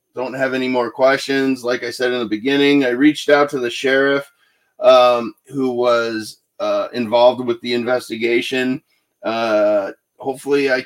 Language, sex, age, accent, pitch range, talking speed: English, male, 30-49, American, 115-140 Hz, 155 wpm